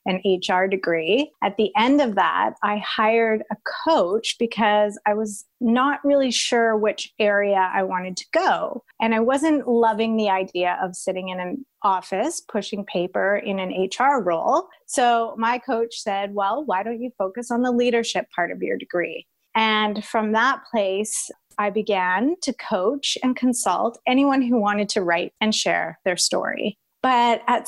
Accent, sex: American, female